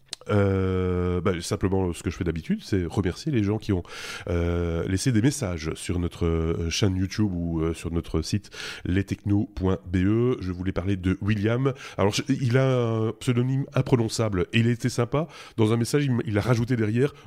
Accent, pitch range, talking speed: French, 95-125 Hz, 190 wpm